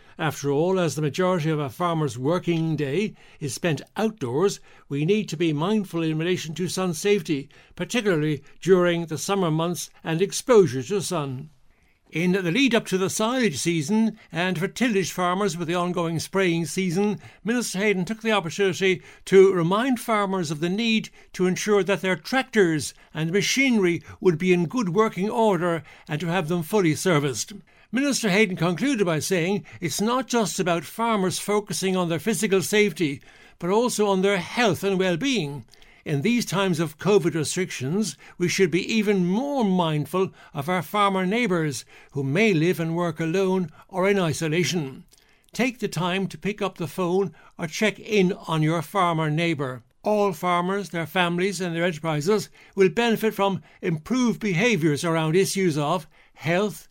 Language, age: English, 60-79